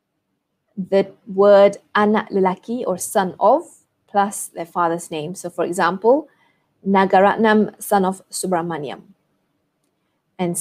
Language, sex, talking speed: English, female, 105 wpm